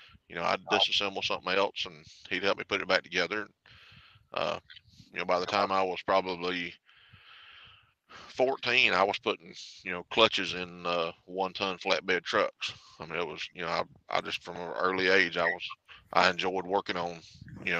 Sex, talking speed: male, 190 wpm